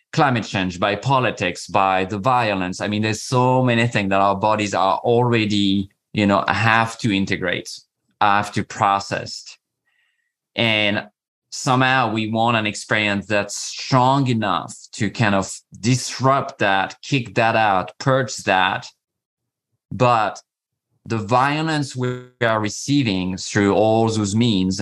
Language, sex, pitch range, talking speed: English, male, 100-130 Hz, 135 wpm